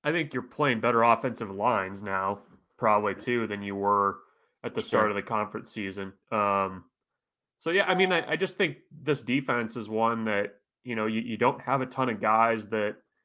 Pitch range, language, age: 105-120 Hz, English, 20-39